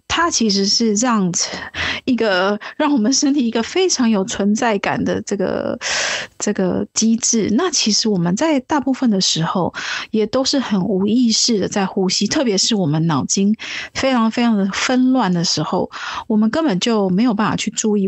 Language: Chinese